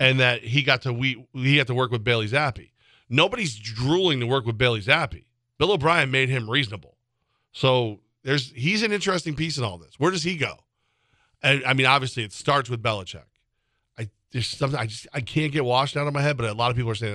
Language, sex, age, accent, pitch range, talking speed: English, male, 40-59, American, 115-140 Hz, 230 wpm